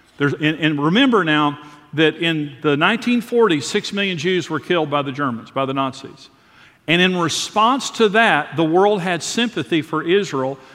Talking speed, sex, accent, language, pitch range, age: 165 wpm, male, American, English, 145-175 Hz, 50-69